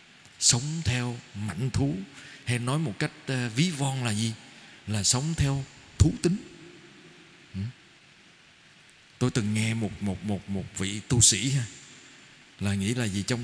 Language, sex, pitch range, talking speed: Vietnamese, male, 130-170 Hz, 145 wpm